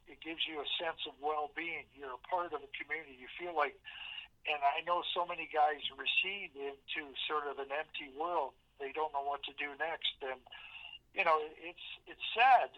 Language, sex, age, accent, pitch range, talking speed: English, male, 50-69, American, 145-165 Hz, 195 wpm